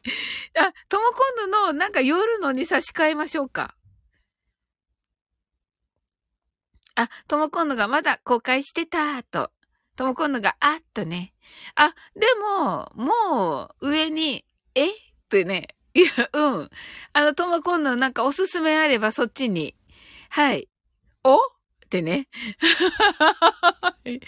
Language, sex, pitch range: Japanese, female, 210-335 Hz